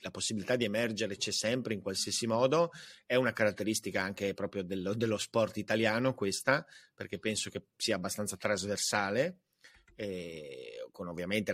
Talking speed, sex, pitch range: 145 wpm, male, 105-130 Hz